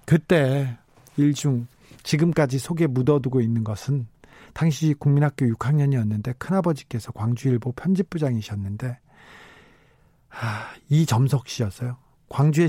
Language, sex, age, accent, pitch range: Korean, male, 40-59, native, 125-155 Hz